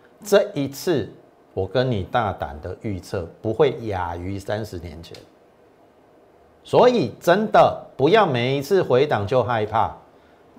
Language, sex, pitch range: Chinese, male, 95-135 Hz